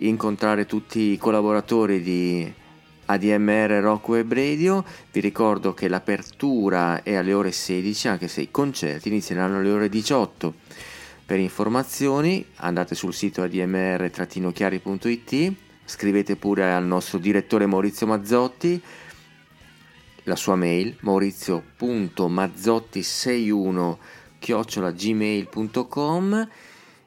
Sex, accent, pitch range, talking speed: male, native, 90-105 Hz, 95 wpm